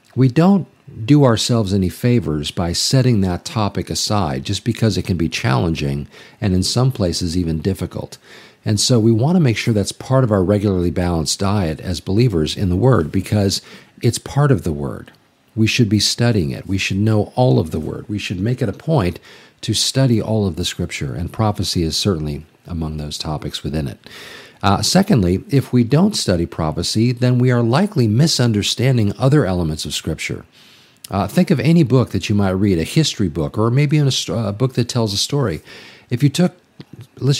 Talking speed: 195 wpm